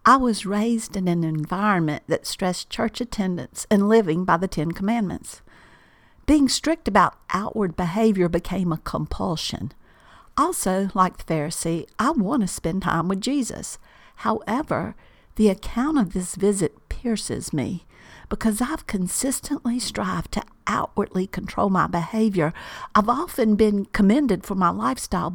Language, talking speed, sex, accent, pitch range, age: English, 140 wpm, female, American, 180-220 Hz, 50-69